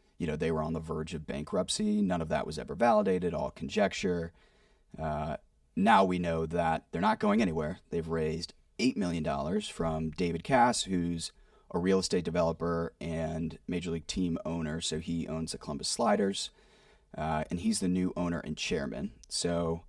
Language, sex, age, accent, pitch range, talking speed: English, male, 30-49, American, 80-95 Hz, 175 wpm